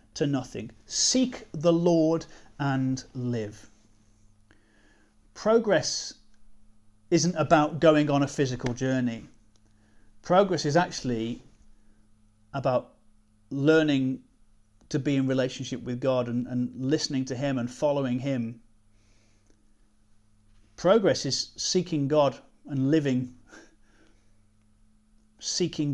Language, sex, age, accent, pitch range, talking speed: English, male, 40-59, British, 105-150 Hz, 95 wpm